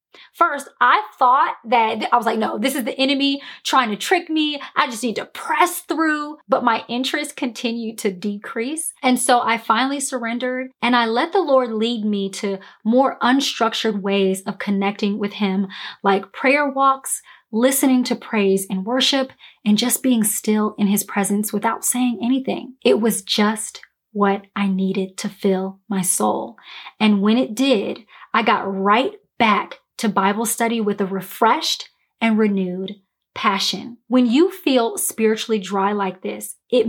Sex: female